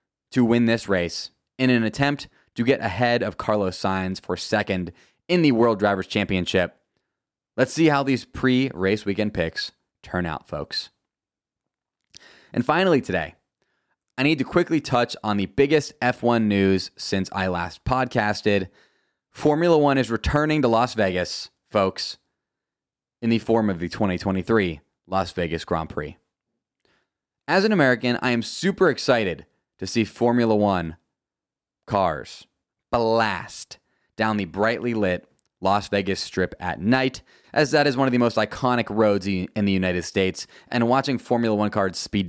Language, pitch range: English, 95-125 Hz